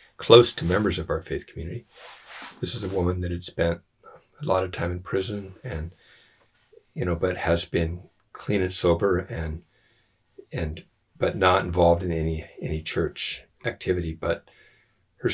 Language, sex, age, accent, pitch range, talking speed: English, male, 50-69, American, 85-95 Hz, 160 wpm